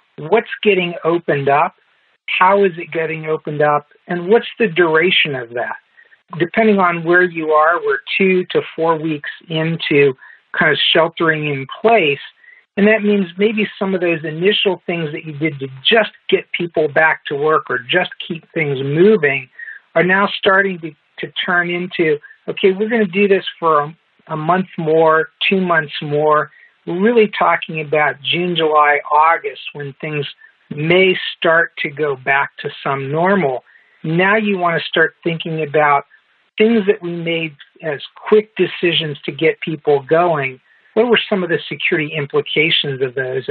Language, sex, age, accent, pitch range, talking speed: English, male, 50-69, American, 150-190 Hz, 165 wpm